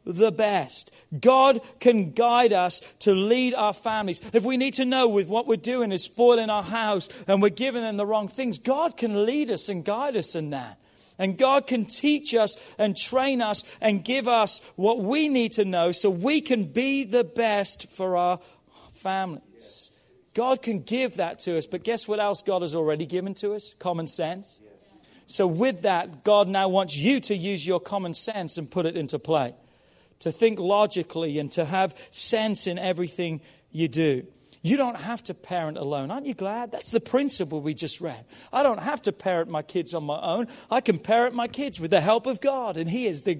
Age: 40-59